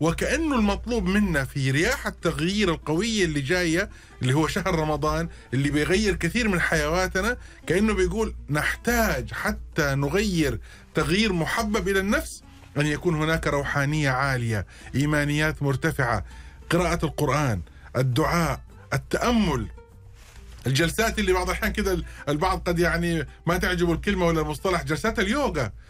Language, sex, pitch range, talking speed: Arabic, male, 145-200 Hz, 125 wpm